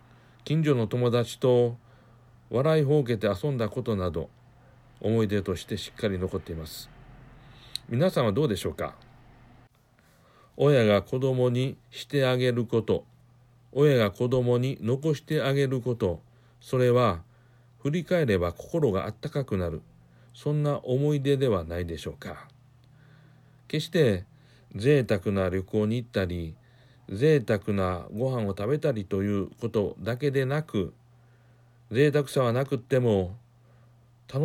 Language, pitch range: Japanese, 110-130 Hz